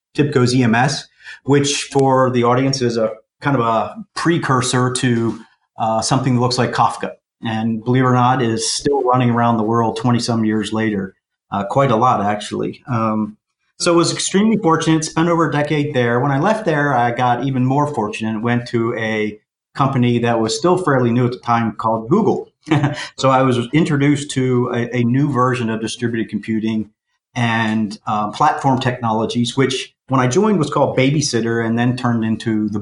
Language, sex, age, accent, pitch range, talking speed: English, male, 40-59, American, 115-135 Hz, 190 wpm